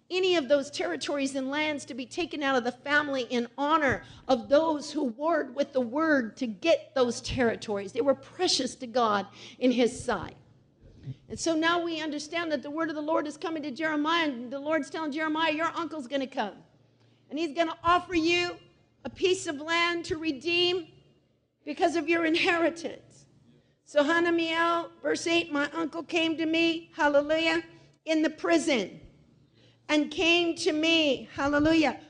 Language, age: English, 50-69